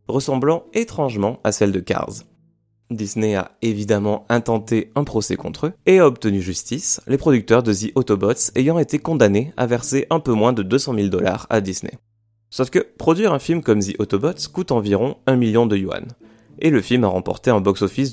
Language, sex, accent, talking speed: French, male, French, 190 wpm